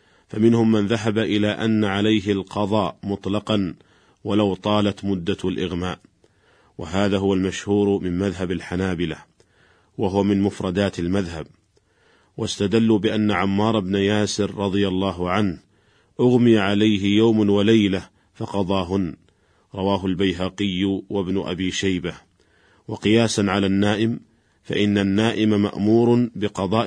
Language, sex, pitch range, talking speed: Arabic, male, 95-110 Hz, 105 wpm